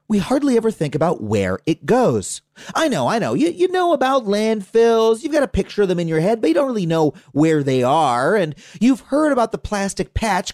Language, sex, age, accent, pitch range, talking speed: English, male, 30-49, American, 160-255 Hz, 235 wpm